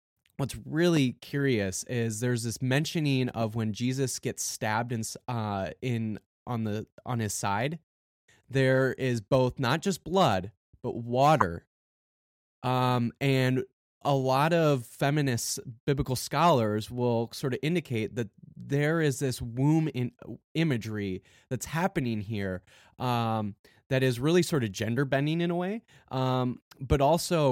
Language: English